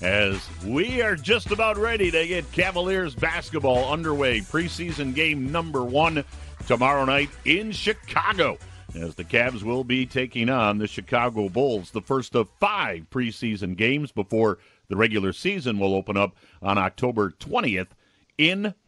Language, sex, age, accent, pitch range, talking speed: English, male, 50-69, American, 110-155 Hz, 145 wpm